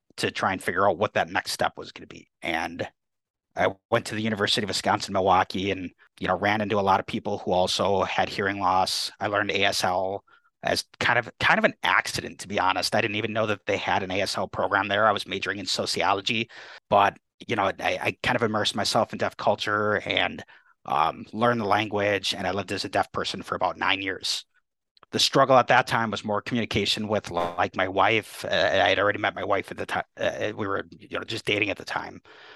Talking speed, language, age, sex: 230 wpm, English, 30-49, male